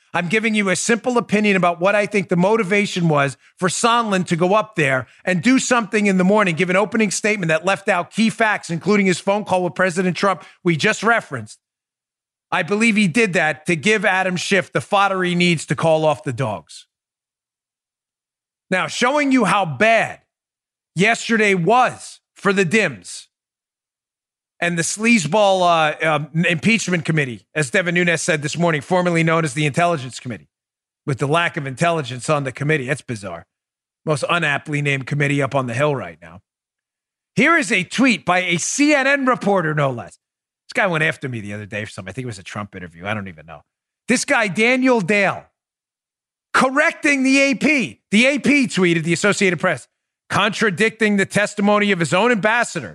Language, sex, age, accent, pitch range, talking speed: English, male, 40-59, American, 150-215 Hz, 185 wpm